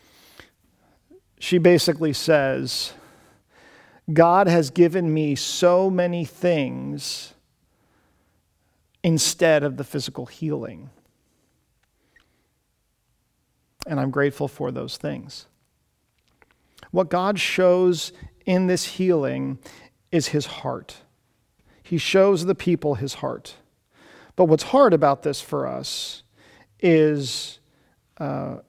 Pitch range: 140-180 Hz